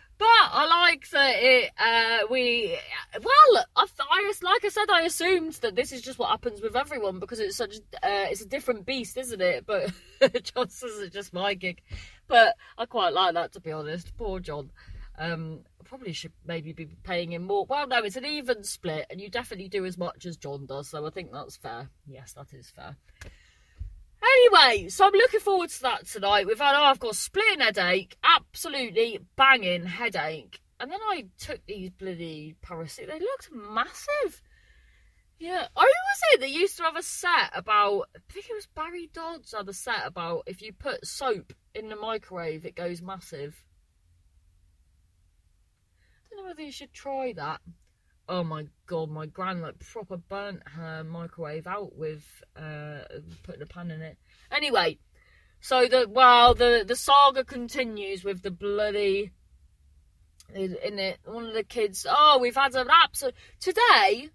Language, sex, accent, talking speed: English, female, British, 175 wpm